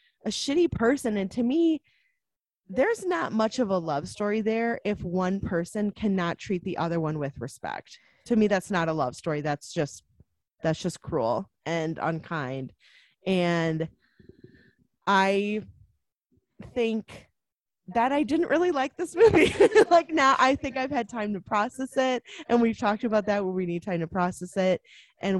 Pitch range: 180-235 Hz